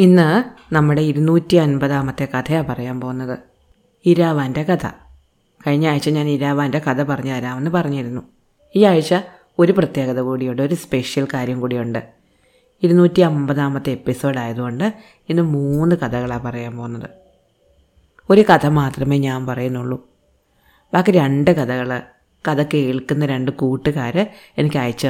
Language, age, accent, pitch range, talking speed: Malayalam, 30-49, native, 125-160 Hz, 115 wpm